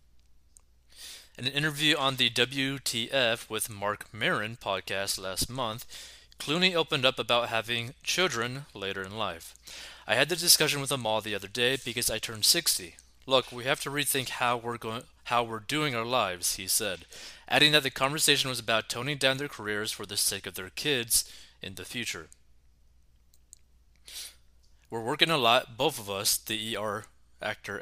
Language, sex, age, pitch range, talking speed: English, male, 20-39, 100-140 Hz, 170 wpm